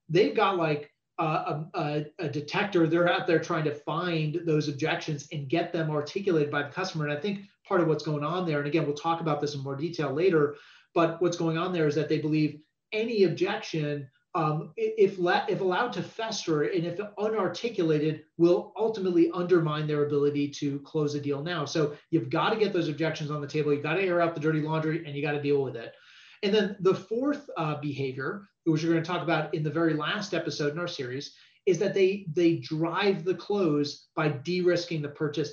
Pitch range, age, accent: 150-175 Hz, 30-49, American